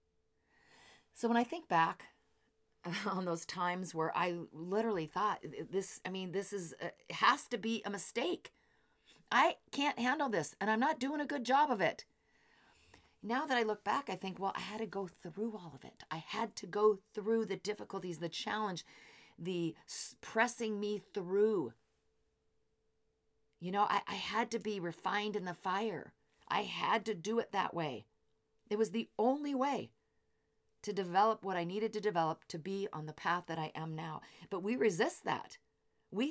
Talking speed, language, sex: 180 wpm, English, female